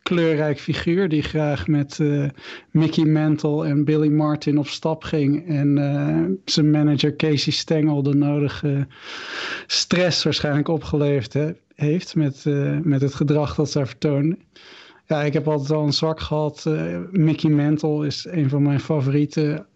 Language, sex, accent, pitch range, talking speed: Dutch, male, Dutch, 140-155 Hz, 150 wpm